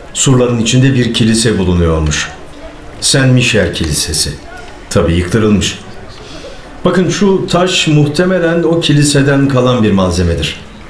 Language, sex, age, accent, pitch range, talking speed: Turkish, male, 60-79, native, 95-125 Hz, 100 wpm